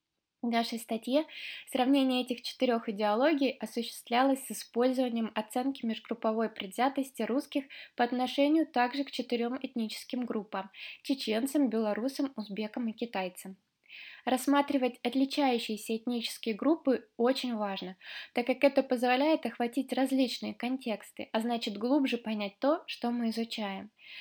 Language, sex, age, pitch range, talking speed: Russian, female, 20-39, 225-265 Hz, 115 wpm